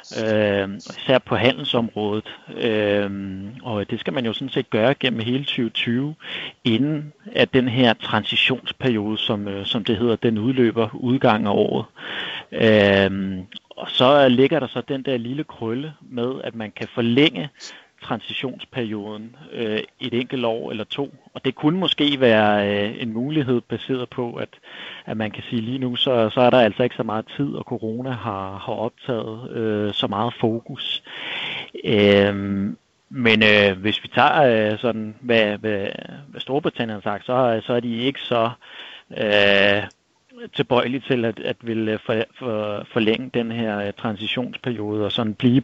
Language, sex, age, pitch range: Danish, male, 30-49, 105-125 Hz